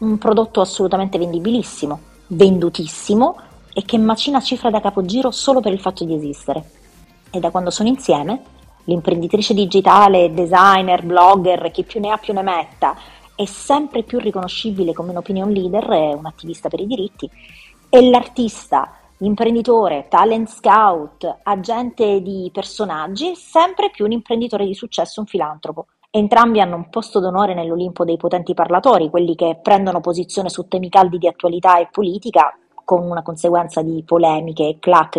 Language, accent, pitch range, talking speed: Italian, native, 170-220 Hz, 150 wpm